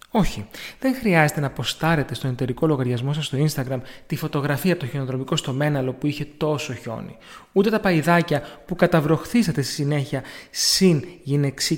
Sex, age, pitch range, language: male, 30-49, 130-175 Hz, Greek